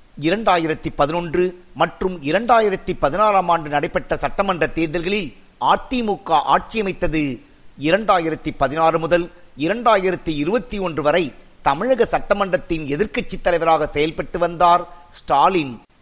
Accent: native